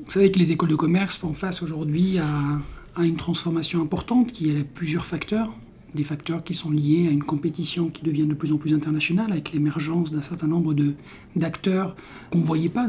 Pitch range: 150-175 Hz